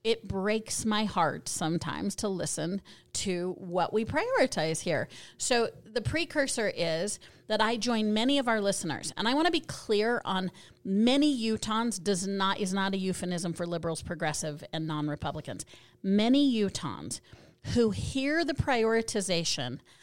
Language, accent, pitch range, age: English, American, 170-230 Hz, 40-59